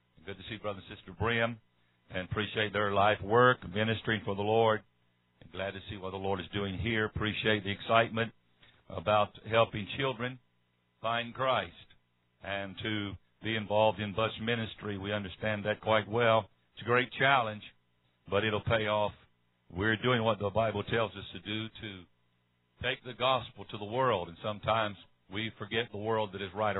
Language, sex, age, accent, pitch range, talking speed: English, male, 60-79, American, 95-115 Hz, 175 wpm